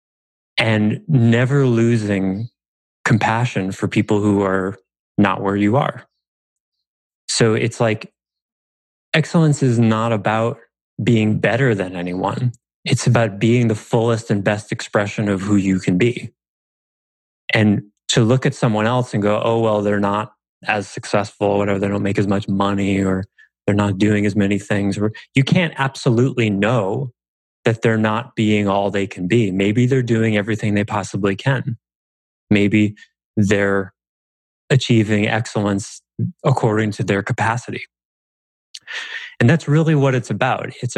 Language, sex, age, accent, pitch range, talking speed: English, male, 30-49, American, 100-125 Hz, 145 wpm